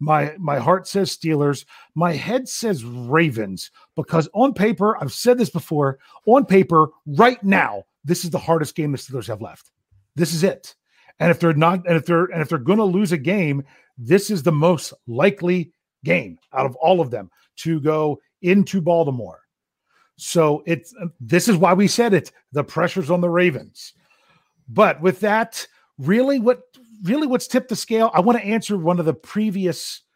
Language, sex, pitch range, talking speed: English, male, 145-195 Hz, 185 wpm